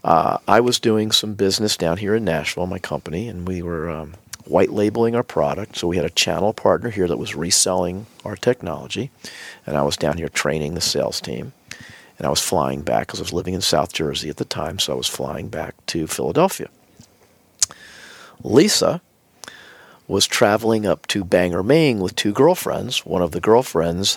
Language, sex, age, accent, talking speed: English, male, 50-69, American, 190 wpm